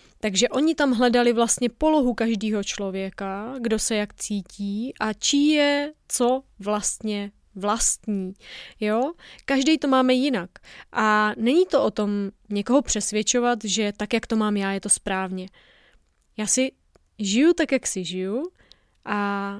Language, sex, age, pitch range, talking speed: Czech, female, 20-39, 205-265 Hz, 145 wpm